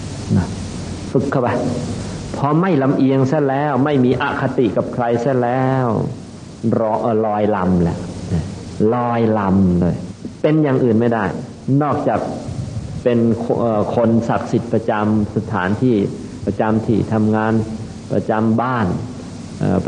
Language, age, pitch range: Thai, 50-69, 100-120 Hz